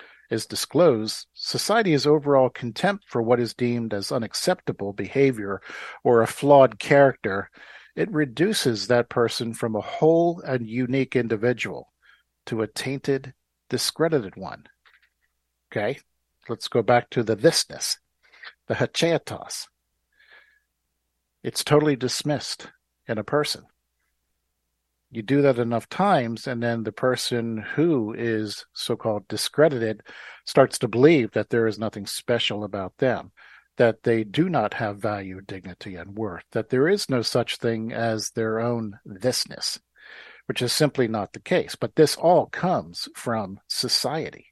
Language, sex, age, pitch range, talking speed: English, male, 50-69, 105-135 Hz, 135 wpm